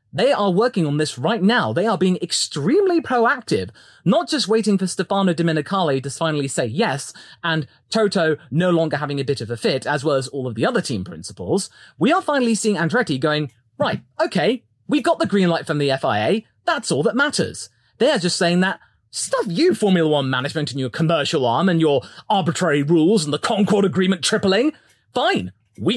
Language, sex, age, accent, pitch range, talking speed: English, male, 30-49, British, 150-225 Hz, 200 wpm